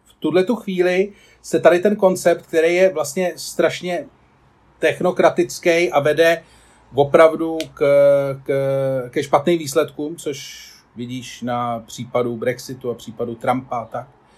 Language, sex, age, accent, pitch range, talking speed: Czech, male, 30-49, native, 135-195 Hz, 115 wpm